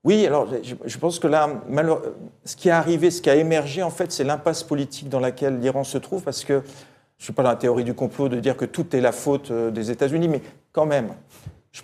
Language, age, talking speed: French, 40-59, 245 wpm